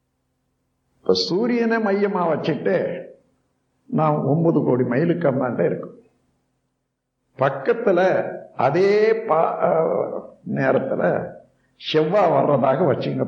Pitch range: 150-225 Hz